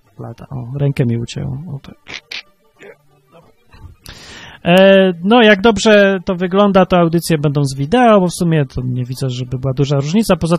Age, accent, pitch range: 30-49, native, 140-185 Hz